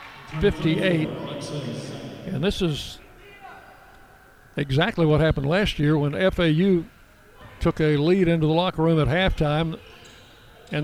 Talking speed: 115 wpm